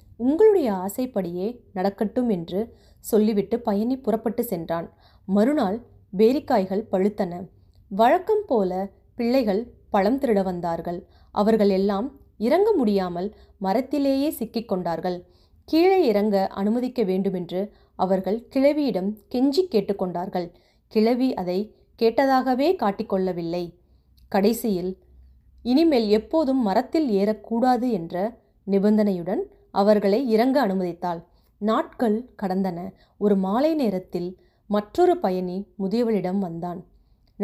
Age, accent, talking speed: 20-39, native, 85 wpm